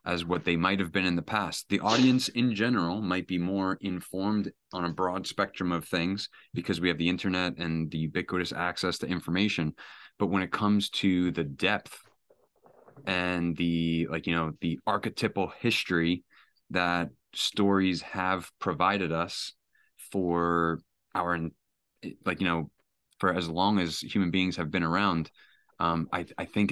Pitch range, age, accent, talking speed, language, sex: 85-95 Hz, 30-49, American, 160 wpm, English, male